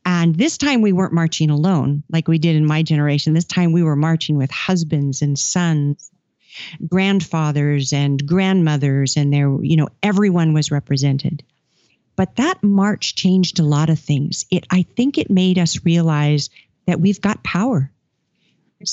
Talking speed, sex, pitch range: 165 wpm, female, 150-190 Hz